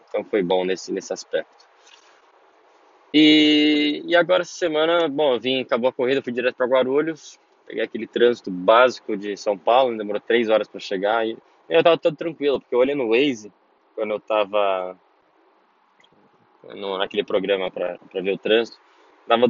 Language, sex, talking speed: English, male, 165 wpm